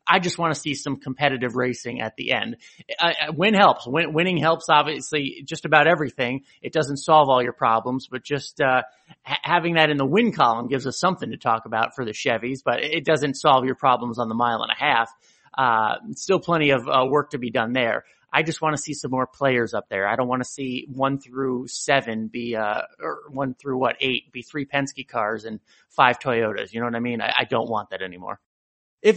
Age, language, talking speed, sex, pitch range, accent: 30-49, English, 230 wpm, male, 130-180 Hz, American